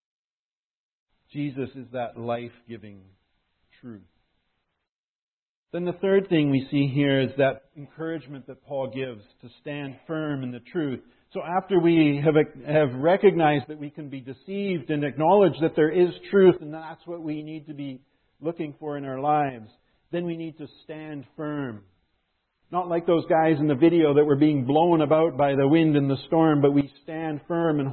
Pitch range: 130-160 Hz